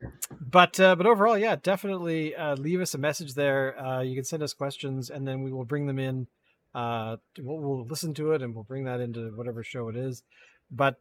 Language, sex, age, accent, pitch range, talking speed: English, male, 40-59, American, 130-170 Hz, 225 wpm